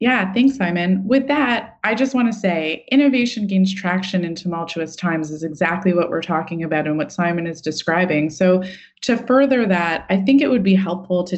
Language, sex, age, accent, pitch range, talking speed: English, female, 20-39, American, 165-230 Hz, 200 wpm